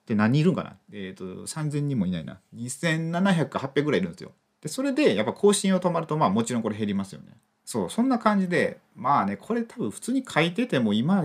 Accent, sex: native, male